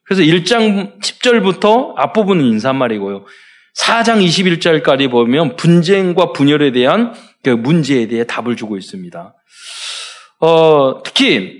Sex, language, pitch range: male, Korean, 135-215 Hz